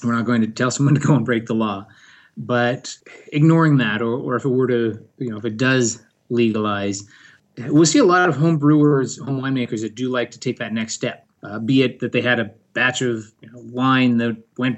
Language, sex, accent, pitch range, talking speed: English, male, American, 115-140 Hz, 235 wpm